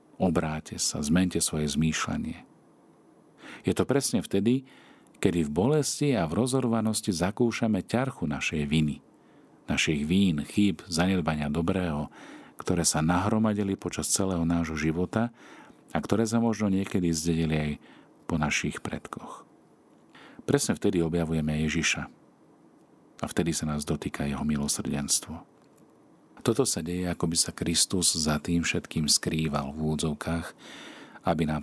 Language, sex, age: Slovak, male, 50-69